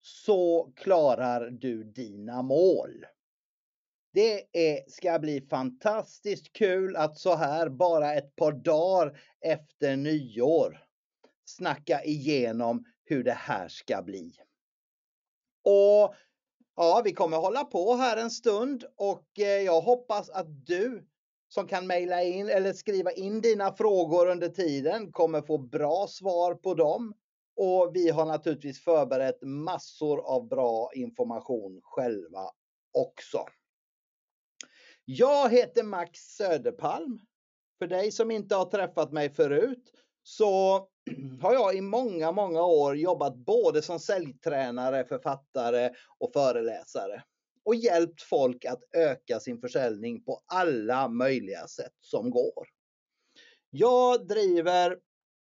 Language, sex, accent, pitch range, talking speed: Swedish, male, native, 155-220 Hz, 120 wpm